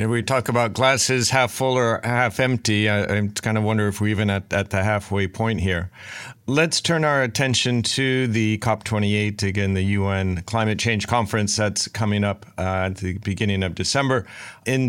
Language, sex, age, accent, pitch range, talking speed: English, male, 40-59, American, 95-120 Hz, 190 wpm